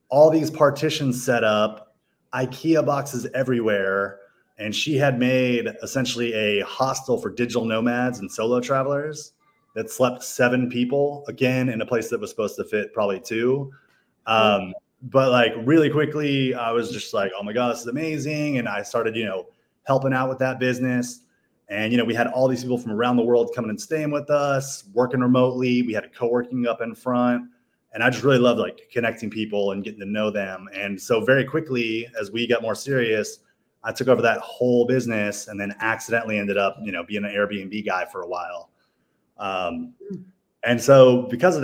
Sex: male